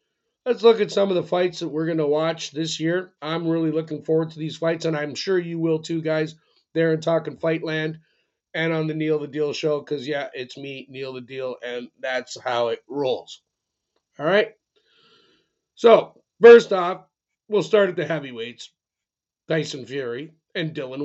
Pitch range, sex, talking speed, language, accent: 150-190 Hz, male, 185 wpm, English, American